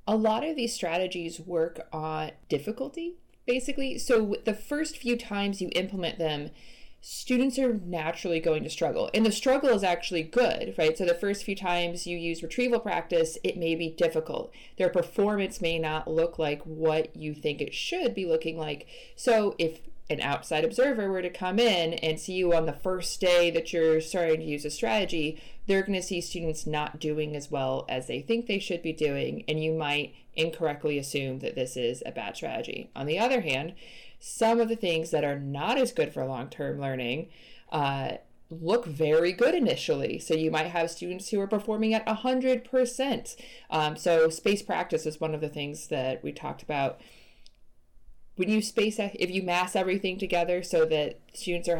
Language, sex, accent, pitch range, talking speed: English, female, American, 155-205 Hz, 190 wpm